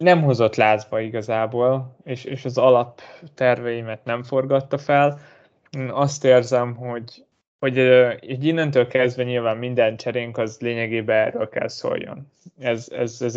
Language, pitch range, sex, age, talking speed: Hungarian, 115-135 Hz, male, 20-39, 140 wpm